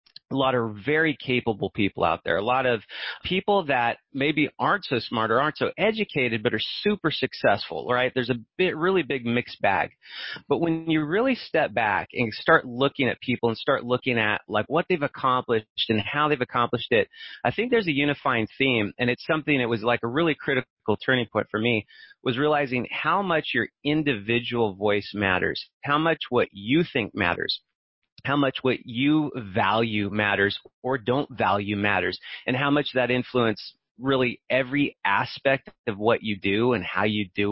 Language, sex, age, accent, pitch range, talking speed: English, male, 30-49, American, 110-145 Hz, 185 wpm